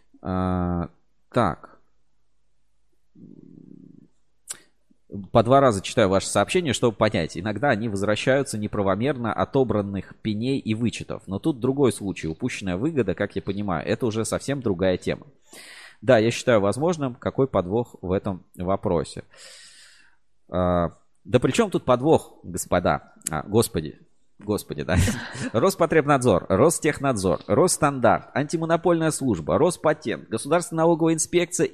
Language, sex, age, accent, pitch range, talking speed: Russian, male, 30-49, native, 95-135 Hz, 115 wpm